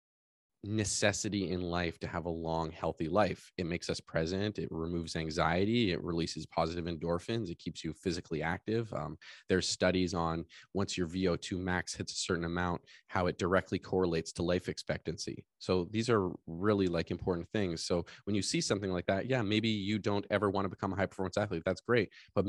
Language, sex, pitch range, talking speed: English, male, 85-105 Hz, 195 wpm